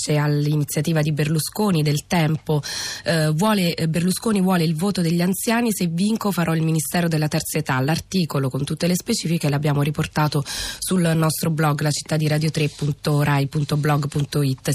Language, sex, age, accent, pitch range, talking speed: Italian, female, 20-39, native, 145-180 Hz, 130 wpm